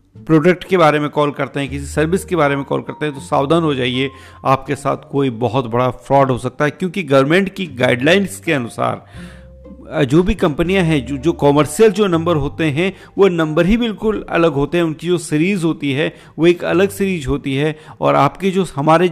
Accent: native